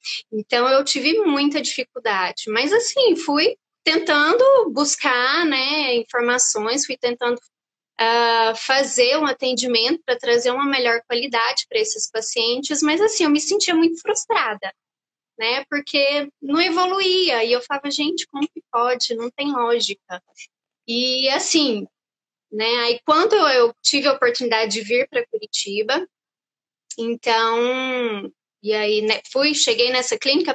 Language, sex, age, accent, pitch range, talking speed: Portuguese, female, 20-39, Brazilian, 235-330 Hz, 135 wpm